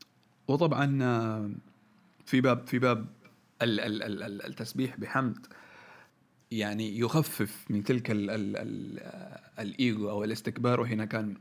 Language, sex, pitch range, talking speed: Arabic, male, 110-135 Hz, 100 wpm